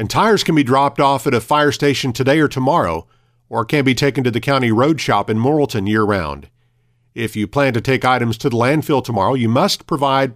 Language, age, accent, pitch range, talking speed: English, 50-69, American, 115-145 Hz, 220 wpm